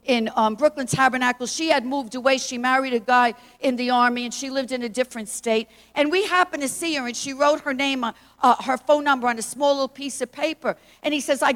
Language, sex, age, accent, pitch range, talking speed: English, female, 50-69, American, 270-330 Hz, 255 wpm